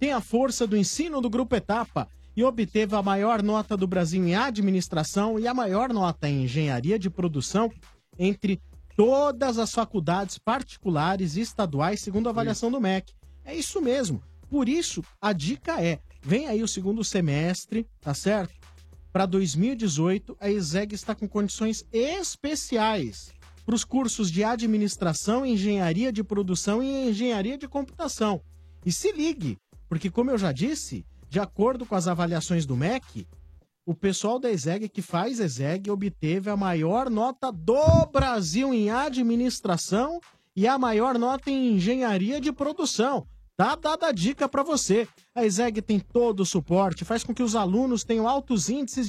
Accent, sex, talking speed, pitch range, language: Brazilian, male, 160 wpm, 175-245 Hz, Portuguese